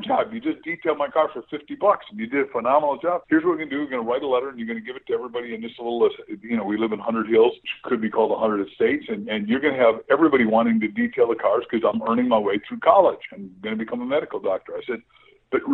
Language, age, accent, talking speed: English, 50-69, American, 315 wpm